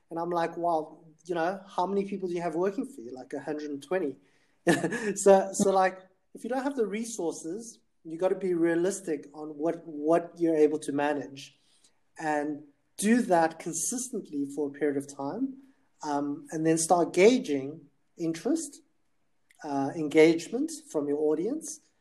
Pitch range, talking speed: 145-175 Hz, 160 wpm